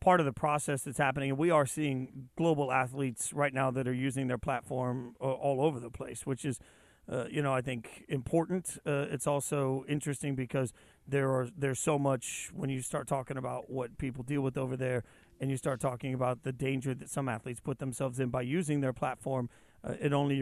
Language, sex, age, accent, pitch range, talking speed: English, male, 40-59, American, 130-150 Hz, 215 wpm